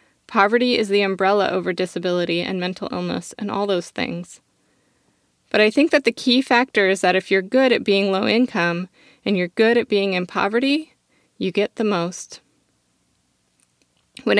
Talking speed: 170 wpm